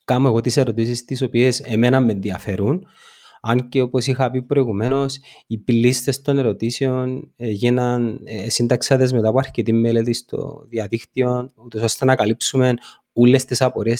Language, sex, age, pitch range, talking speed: Greek, male, 30-49, 120-140 Hz, 145 wpm